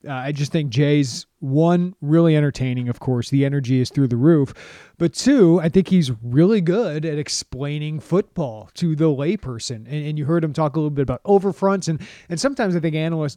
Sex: male